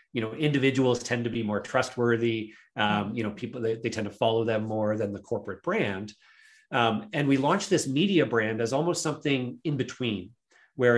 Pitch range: 110-135 Hz